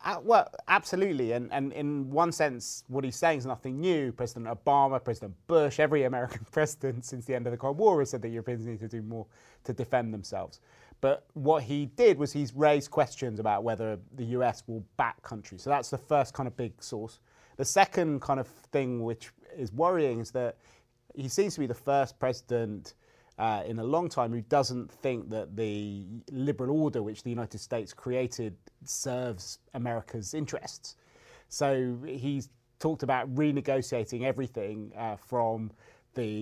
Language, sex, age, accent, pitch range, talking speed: English, male, 30-49, British, 115-140 Hz, 180 wpm